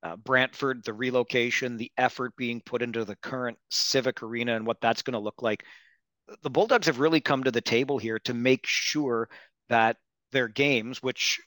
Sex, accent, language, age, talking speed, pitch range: male, American, English, 40-59, 190 wpm, 115-135 Hz